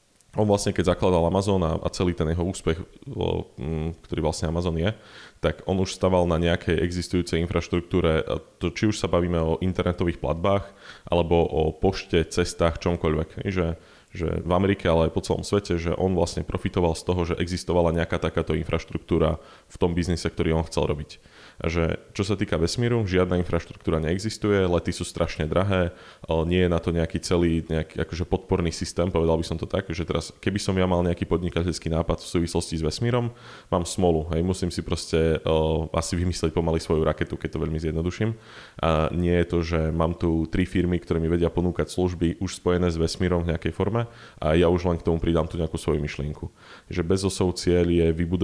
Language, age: Slovak, 20-39